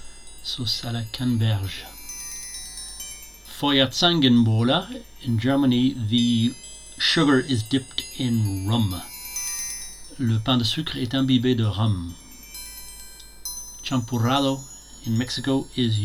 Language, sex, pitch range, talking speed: English, male, 115-130 Hz, 95 wpm